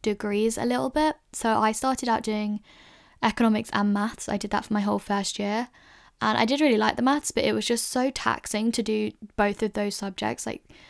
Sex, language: female, English